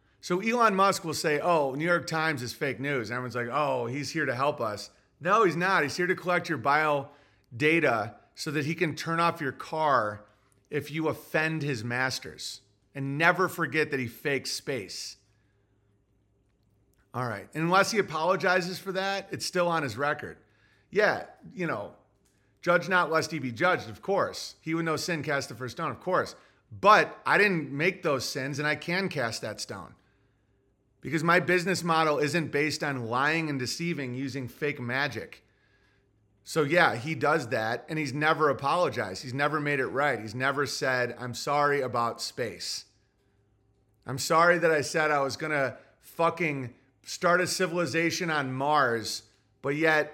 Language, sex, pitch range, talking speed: English, male, 115-165 Hz, 175 wpm